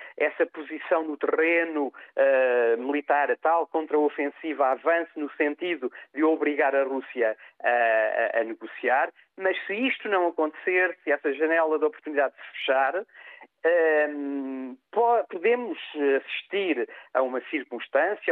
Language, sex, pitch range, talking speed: Portuguese, male, 150-225 Hz, 120 wpm